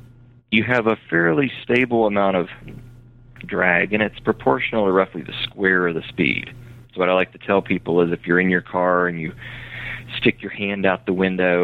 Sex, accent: male, American